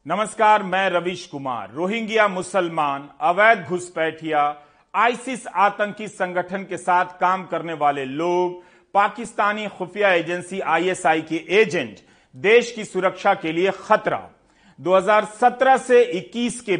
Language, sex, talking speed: Hindi, male, 120 wpm